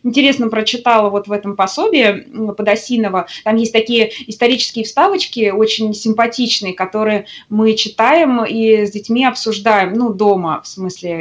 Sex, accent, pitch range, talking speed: female, native, 195-245 Hz, 135 wpm